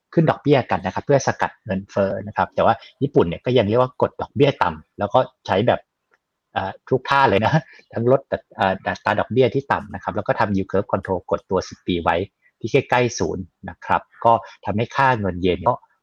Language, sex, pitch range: Thai, male, 100-135 Hz